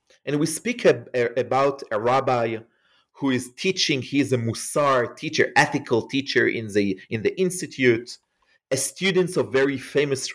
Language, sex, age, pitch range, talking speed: English, male, 40-59, 130-185 Hz, 160 wpm